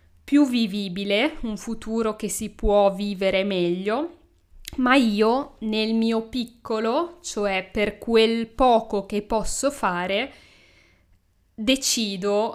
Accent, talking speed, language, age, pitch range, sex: native, 100 wpm, Italian, 20-39, 195-230 Hz, female